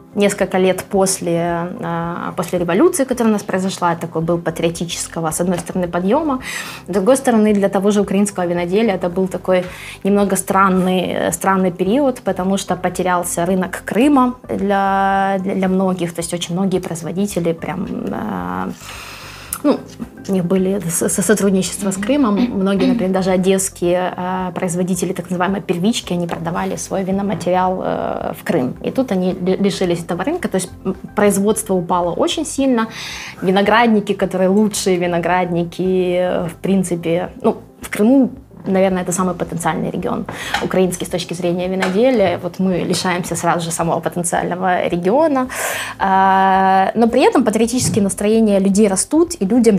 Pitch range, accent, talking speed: 180-215 Hz, native, 140 wpm